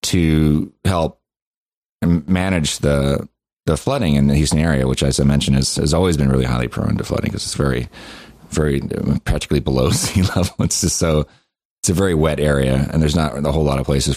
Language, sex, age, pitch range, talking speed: English, male, 30-49, 65-80 Hz, 210 wpm